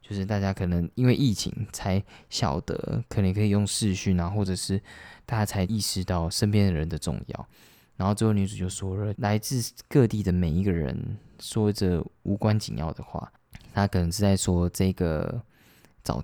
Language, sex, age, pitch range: Chinese, male, 20-39, 90-110 Hz